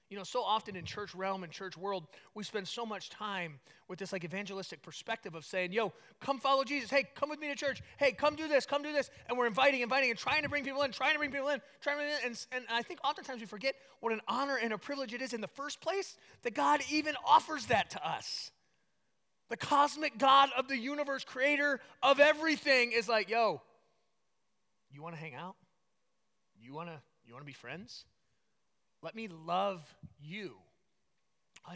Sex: male